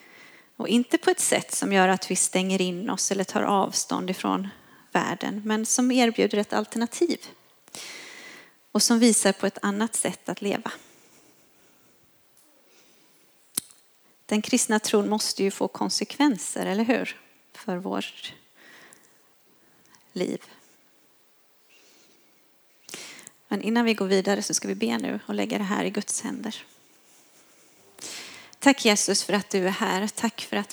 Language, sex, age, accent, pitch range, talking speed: Swedish, female, 30-49, native, 195-230 Hz, 135 wpm